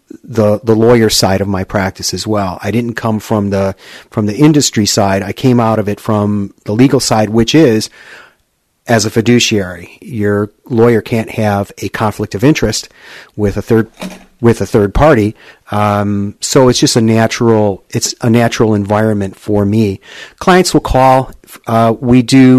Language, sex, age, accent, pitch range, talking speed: English, male, 40-59, American, 100-115 Hz, 175 wpm